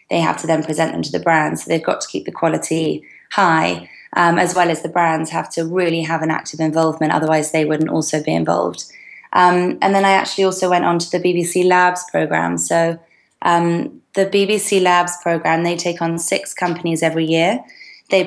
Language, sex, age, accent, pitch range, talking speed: English, female, 20-39, British, 155-175 Hz, 205 wpm